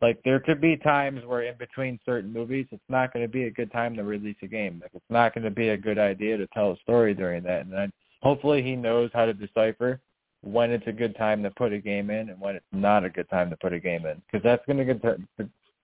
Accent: American